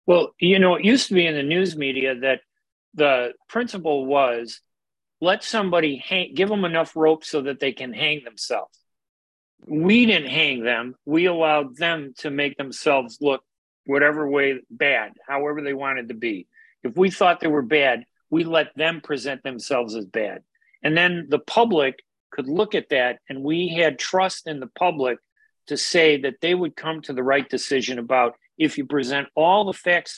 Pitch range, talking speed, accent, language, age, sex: 140-185 Hz, 185 wpm, American, English, 40-59, male